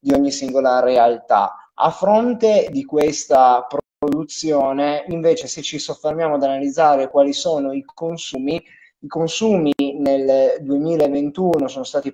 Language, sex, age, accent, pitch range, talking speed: Italian, male, 20-39, native, 135-160 Hz, 125 wpm